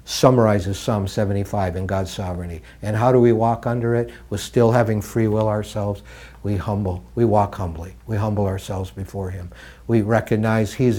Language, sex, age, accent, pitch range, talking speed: English, male, 60-79, American, 95-115 Hz, 175 wpm